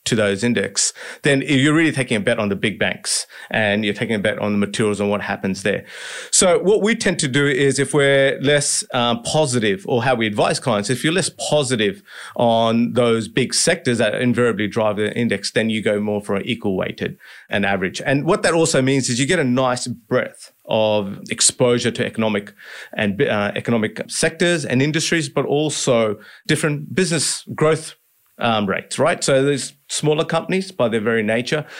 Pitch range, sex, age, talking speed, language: 110-145 Hz, male, 30-49, 190 wpm, English